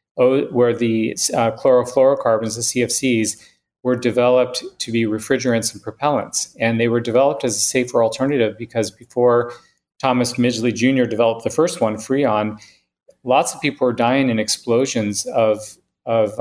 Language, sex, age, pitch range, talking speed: English, male, 40-59, 110-130 Hz, 145 wpm